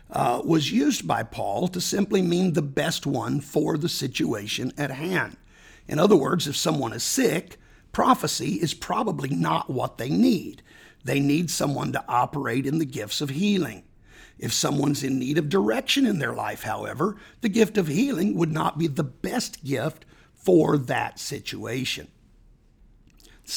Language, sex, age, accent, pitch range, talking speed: English, male, 50-69, American, 140-205 Hz, 165 wpm